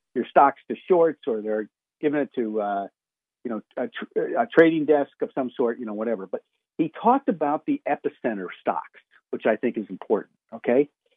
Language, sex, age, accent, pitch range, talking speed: English, male, 50-69, American, 140-225 Hz, 195 wpm